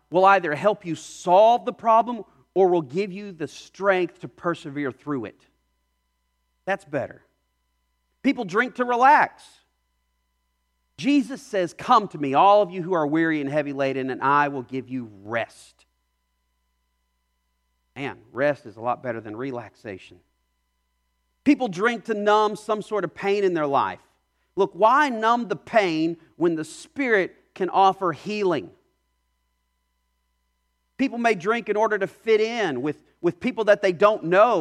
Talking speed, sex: 155 wpm, male